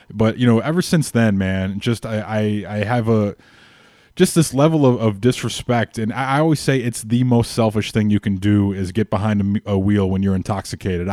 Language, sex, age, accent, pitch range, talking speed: English, male, 20-39, American, 105-125 Hz, 220 wpm